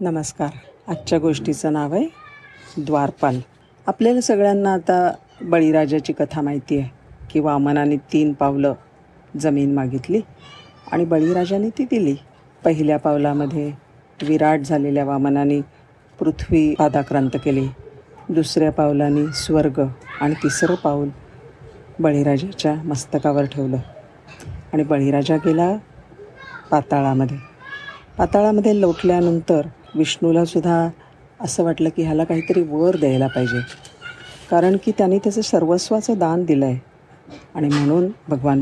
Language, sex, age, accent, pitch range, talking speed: Marathi, female, 50-69, native, 140-165 Hz, 100 wpm